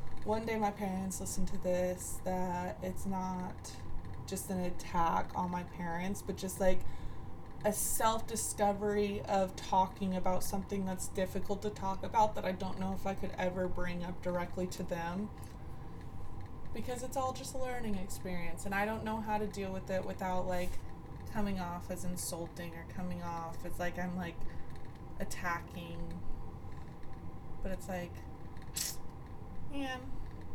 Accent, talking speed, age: American, 150 wpm, 20-39